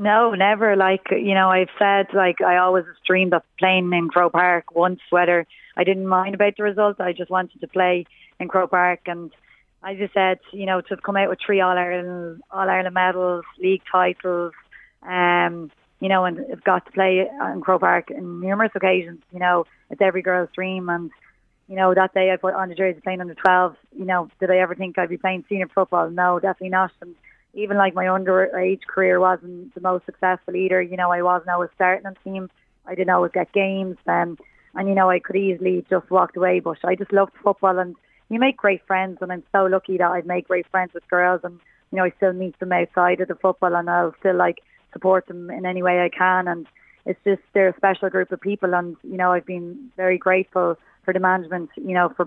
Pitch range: 180-190 Hz